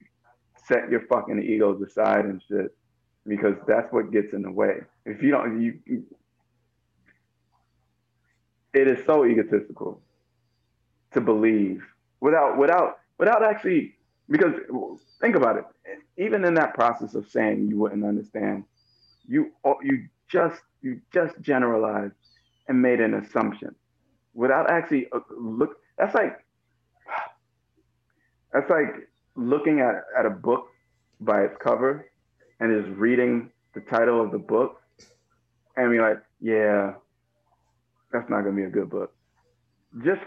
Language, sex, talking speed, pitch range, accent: English, male, 130 wpm, 110-145 Hz, American